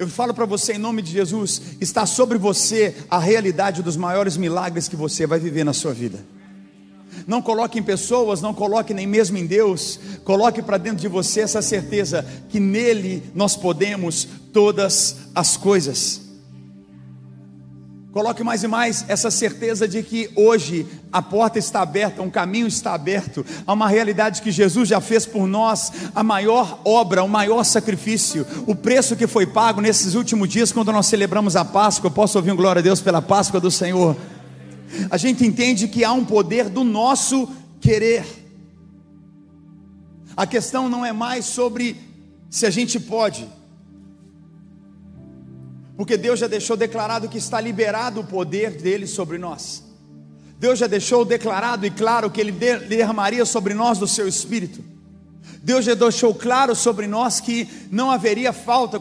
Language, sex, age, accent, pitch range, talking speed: Portuguese, male, 50-69, Brazilian, 175-225 Hz, 160 wpm